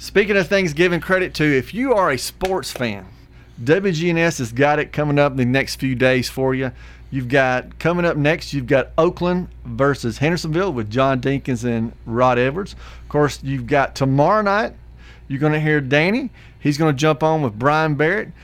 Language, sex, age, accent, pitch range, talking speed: English, male, 40-59, American, 130-170 Hz, 195 wpm